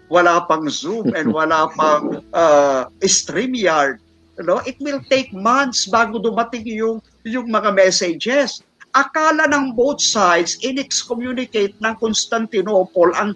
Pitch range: 195-245 Hz